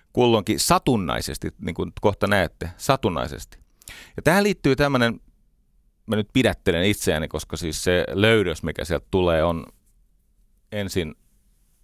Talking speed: 120 wpm